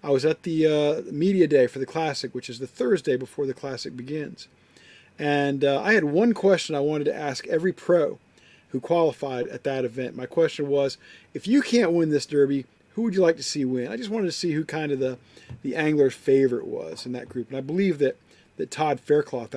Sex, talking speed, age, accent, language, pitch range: male, 225 wpm, 40-59, American, English, 130-155 Hz